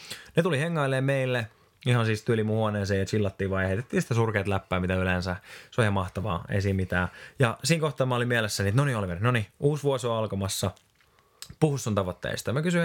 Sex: male